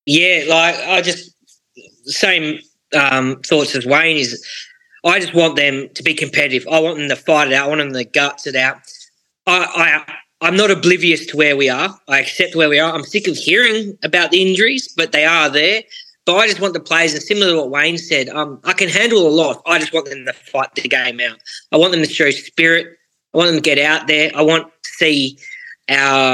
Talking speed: 230 wpm